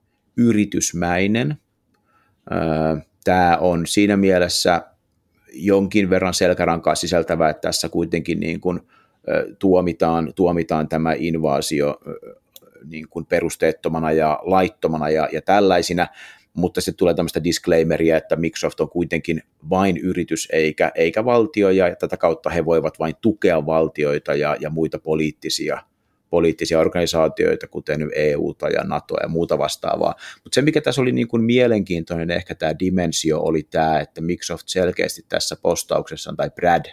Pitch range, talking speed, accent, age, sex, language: 80-95 Hz, 135 wpm, native, 30-49, male, Finnish